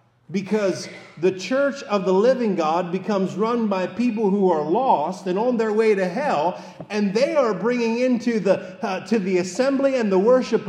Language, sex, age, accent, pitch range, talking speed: English, male, 50-69, American, 155-205 Hz, 180 wpm